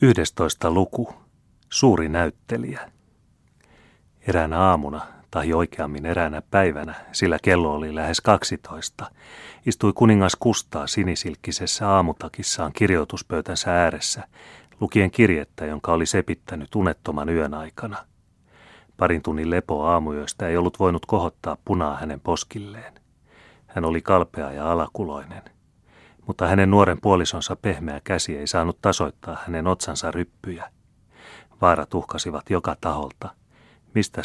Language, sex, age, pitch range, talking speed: Finnish, male, 30-49, 80-95 Hz, 110 wpm